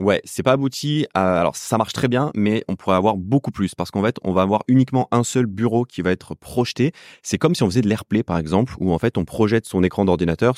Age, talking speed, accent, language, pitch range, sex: 30-49, 265 wpm, French, French, 90-115 Hz, male